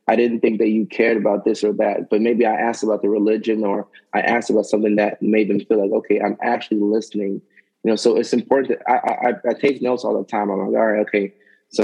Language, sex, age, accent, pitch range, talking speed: English, male, 20-39, American, 105-120 Hz, 260 wpm